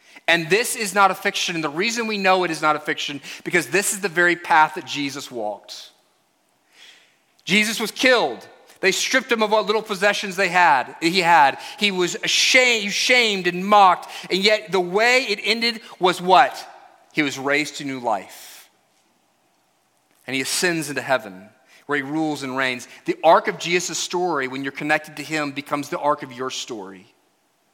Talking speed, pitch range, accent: 185 wpm, 155-195 Hz, American